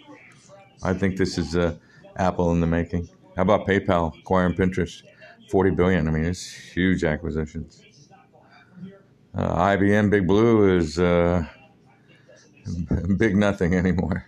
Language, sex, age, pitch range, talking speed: English, male, 50-69, 85-100 Hz, 125 wpm